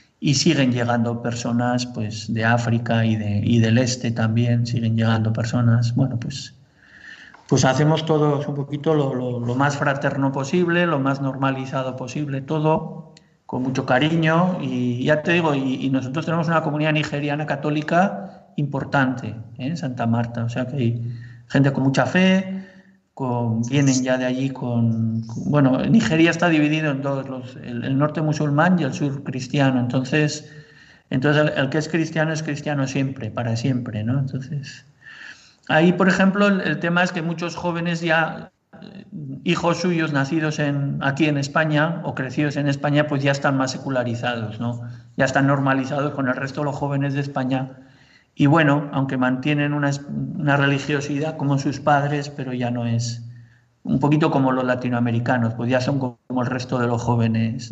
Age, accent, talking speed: 50-69, Spanish, 170 wpm